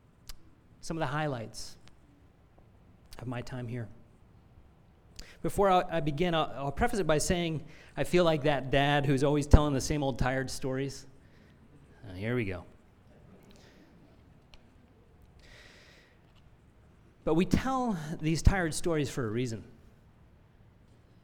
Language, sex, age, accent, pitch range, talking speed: English, male, 30-49, American, 115-165 Hz, 120 wpm